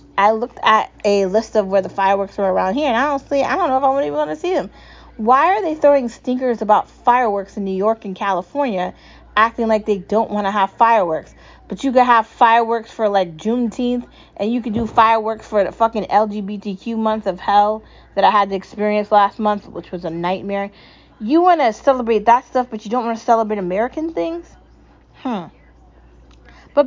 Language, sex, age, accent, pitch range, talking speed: English, female, 20-39, American, 195-245 Hz, 205 wpm